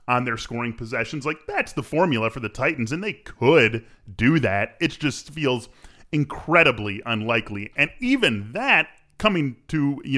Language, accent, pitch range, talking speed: English, American, 105-140 Hz, 160 wpm